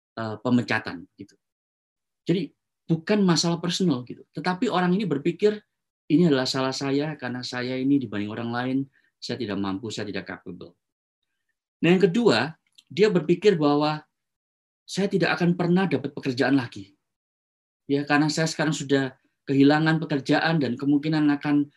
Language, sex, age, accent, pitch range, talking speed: Indonesian, male, 20-39, native, 125-175 Hz, 140 wpm